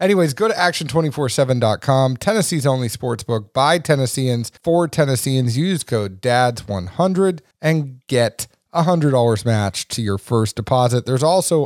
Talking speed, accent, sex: 140 wpm, American, male